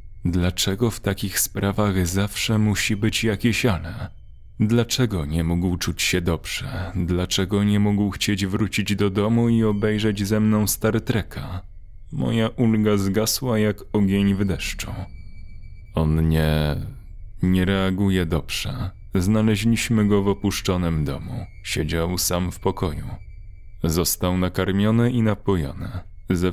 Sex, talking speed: male, 120 wpm